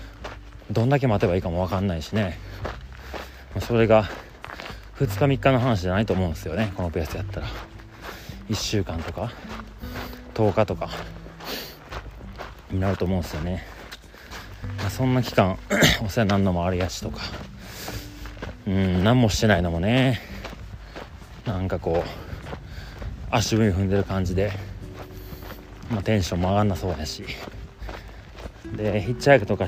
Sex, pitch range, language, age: male, 95-110 Hz, Japanese, 30-49